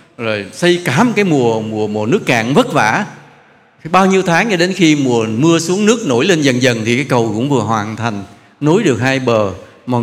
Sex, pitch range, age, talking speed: male, 120-160 Hz, 70-89, 225 wpm